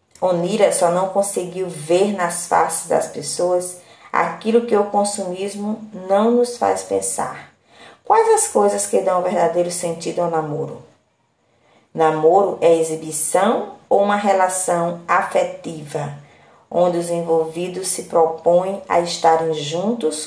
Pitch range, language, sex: 160-205 Hz, Portuguese, female